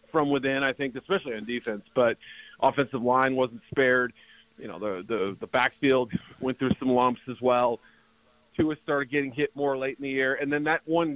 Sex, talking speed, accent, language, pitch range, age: male, 200 wpm, American, English, 120-145 Hz, 40-59